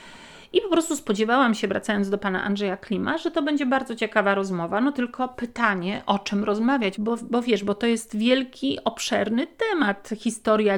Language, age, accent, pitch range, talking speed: Polish, 40-59, native, 200-245 Hz, 180 wpm